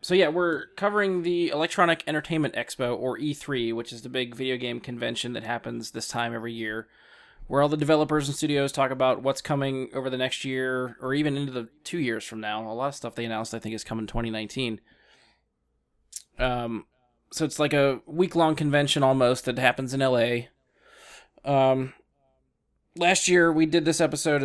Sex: male